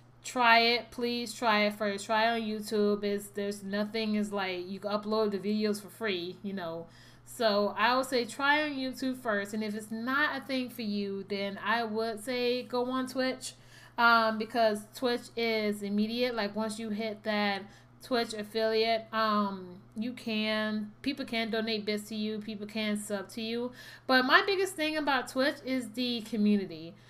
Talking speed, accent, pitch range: 180 wpm, American, 210-250 Hz